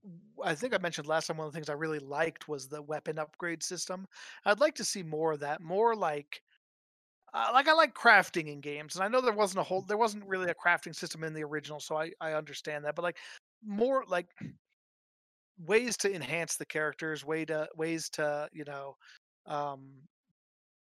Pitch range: 145-170 Hz